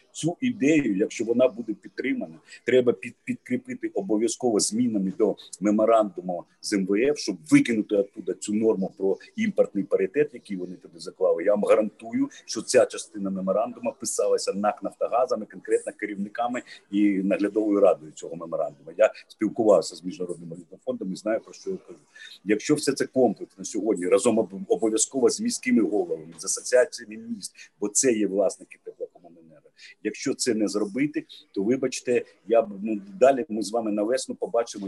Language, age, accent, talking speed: Ukrainian, 50-69, native, 155 wpm